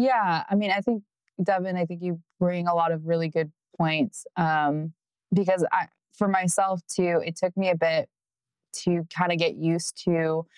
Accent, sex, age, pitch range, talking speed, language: American, female, 20-39, 160-185 Hz, 180 wpm, English